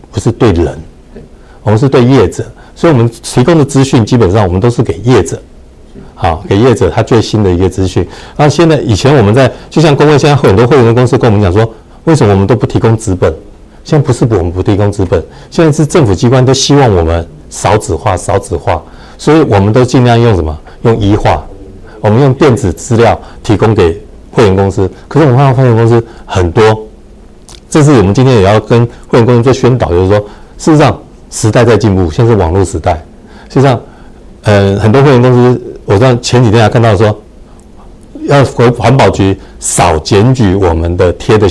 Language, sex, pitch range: Chinese, male, 95-125 Hz